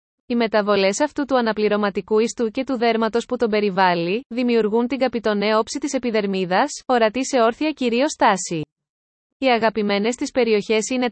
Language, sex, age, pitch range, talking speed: Greek, female, 20-39, 210-255 Hz, 150 wpm